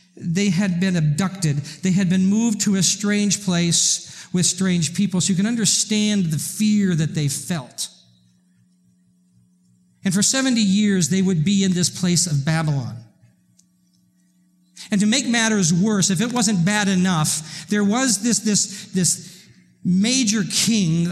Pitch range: 135-210 Hz